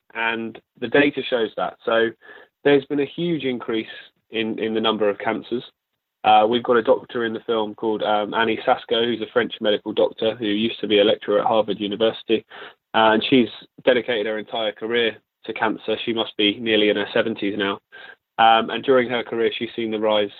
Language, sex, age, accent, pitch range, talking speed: English, male, 20-39, British, 105-125 Hz, 200 wpm